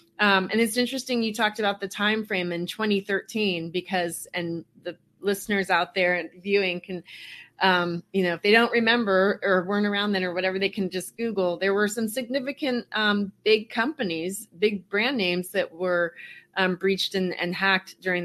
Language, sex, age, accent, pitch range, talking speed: English, female, 30-49, American, 180-210 Hz, 180 wpm